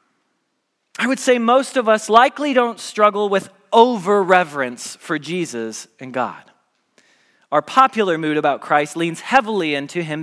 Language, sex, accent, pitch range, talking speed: English, male, American, 160-240 Hz, 140 wpm